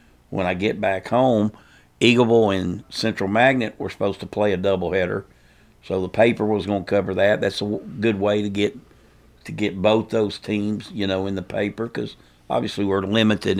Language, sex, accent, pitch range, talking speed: English, male, American, 95-115 Hz, 195 wpm